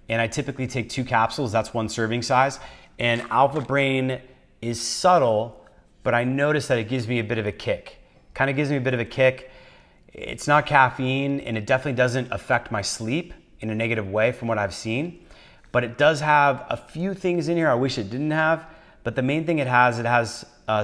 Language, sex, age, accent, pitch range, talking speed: English, male, 30-49, American, 105-130 Hz, 220 wpm